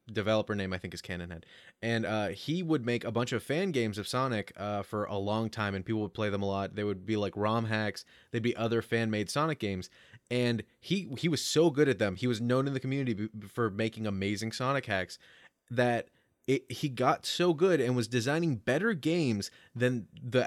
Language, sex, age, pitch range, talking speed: English, male, 20-39, 105-135 Hz, 215 wpm